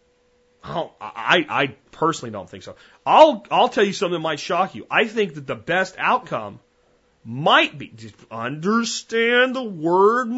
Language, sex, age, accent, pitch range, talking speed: English, male, 30-49, American, 120-175 Hz, 155 wpm